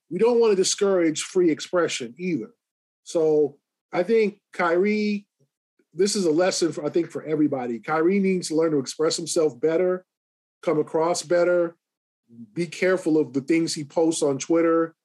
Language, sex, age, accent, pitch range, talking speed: English, male, 20-39, American, 155-185 Hz, 160 wpm